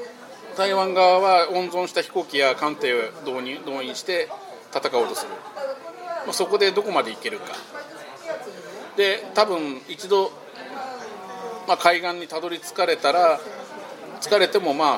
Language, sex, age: Japanese, male, 40-59